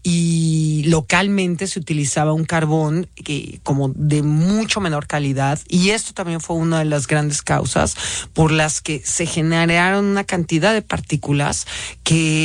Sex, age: male, 40-59